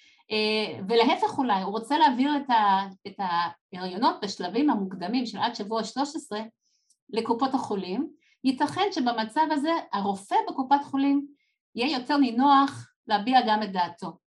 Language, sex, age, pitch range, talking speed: Hebrew, female, 50-69, 215-285 Hz, 120 wpm